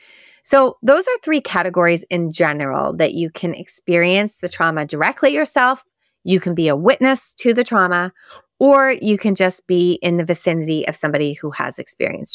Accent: American